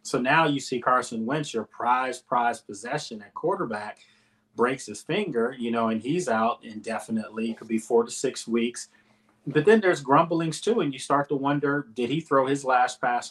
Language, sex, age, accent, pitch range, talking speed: English, male, 30-49, American, 110-140 Hz, 200 wpm